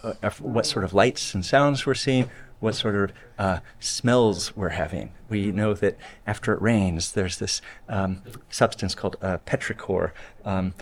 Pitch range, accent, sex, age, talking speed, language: 100-120 Hz, American, male, 30-49, 165 wpm, Danish